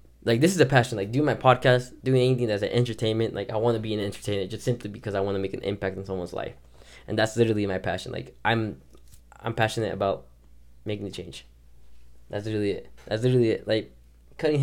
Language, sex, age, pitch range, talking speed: English, male, 10-29, 95-120 Hz, 225 wpm